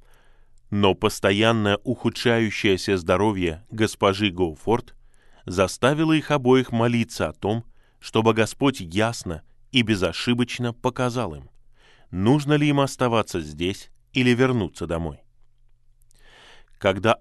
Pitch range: 95-125 Hz